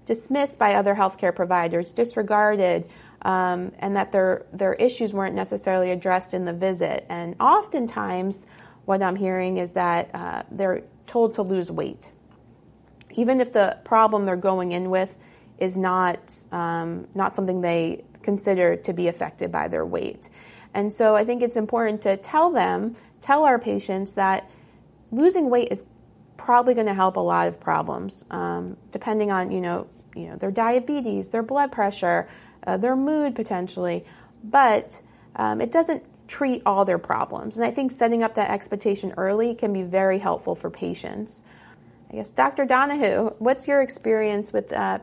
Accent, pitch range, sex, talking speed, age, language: American, 190-245 Hz, female, 165 wpm, 30-49, English